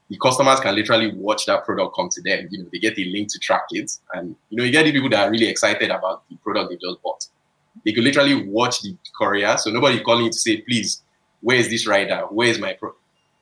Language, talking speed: English, 250 wpm